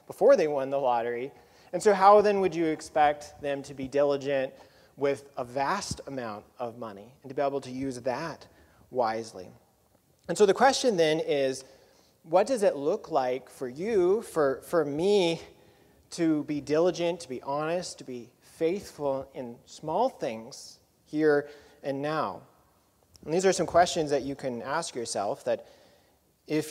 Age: 30-49